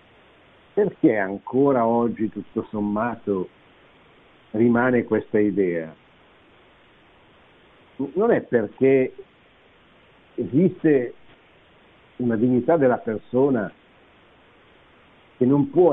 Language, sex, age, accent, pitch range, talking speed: Italian, male, 60-79, native, 100-140 Hz, 70 wpm